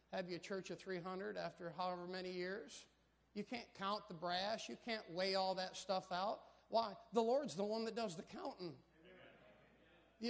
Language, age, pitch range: English, 40-59, 190-250 Hz